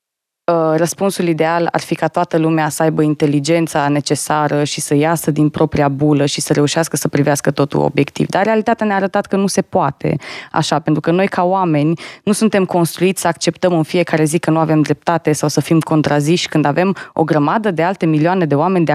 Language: Romanian